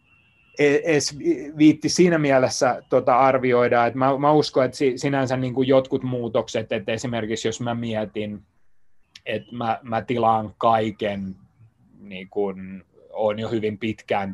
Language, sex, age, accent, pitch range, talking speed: Finnish, male, 20-39, native, 100-120 Hz, 110 wpm